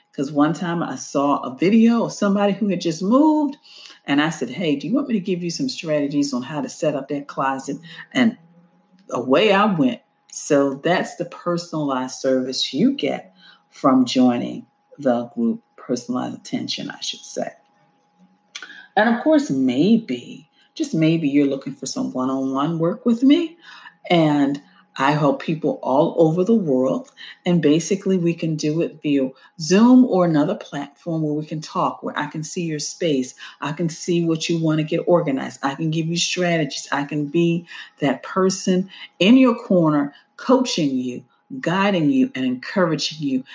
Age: 40-59